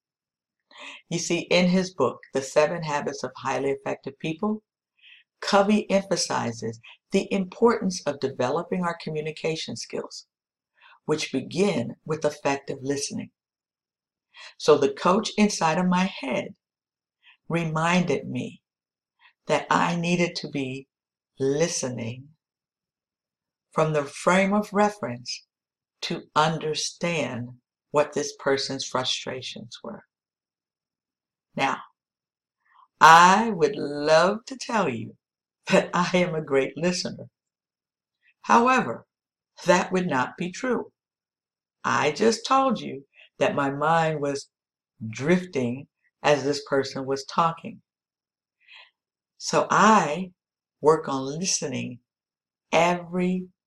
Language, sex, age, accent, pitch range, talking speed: English, female, 50-69, American, 140-190 Hz, 105 wpm